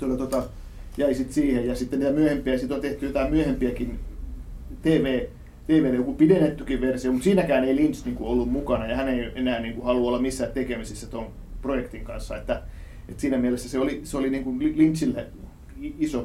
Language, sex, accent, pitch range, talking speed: Finnish, male, native, 120-140 Hz, 165 wpm